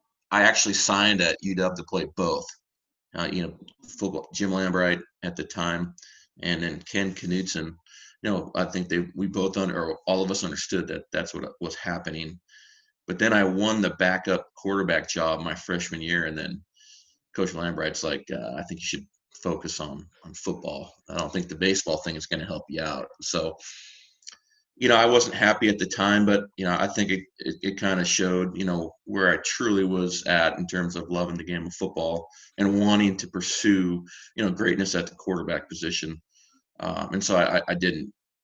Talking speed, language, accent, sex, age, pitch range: 200 wpm, English, American, male, 30-49, 85-100 Hz